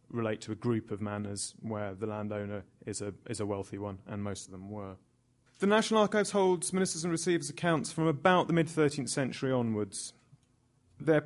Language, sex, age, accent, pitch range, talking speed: English, male, 30-49, British, 110-150 Hz, 180 wpm